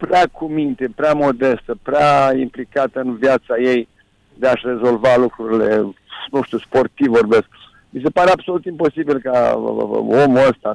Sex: male